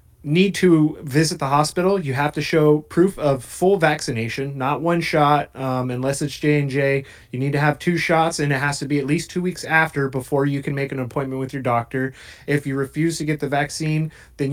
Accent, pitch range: American, 135-160 Hz